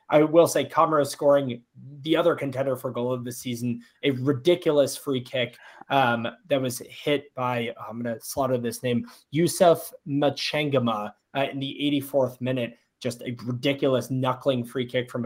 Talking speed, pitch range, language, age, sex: 165 wpm, 120-145 Hz, English, 20-39, male